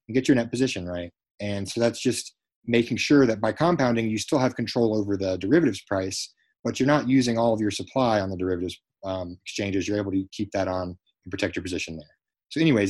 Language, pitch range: English, 95-120 Hz